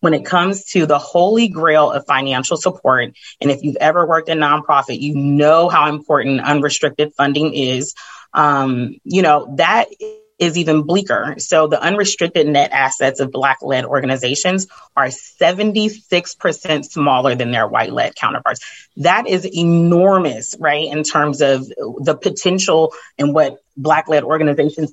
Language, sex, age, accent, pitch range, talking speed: English, female, 30-49, American, 135-165 Hz, 150 wpm